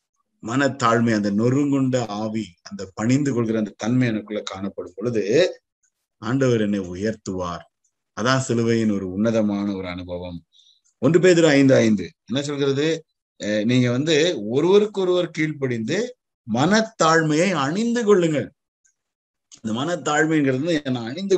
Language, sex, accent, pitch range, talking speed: Tamil, male, native, 115-170 Hz, 110 wpm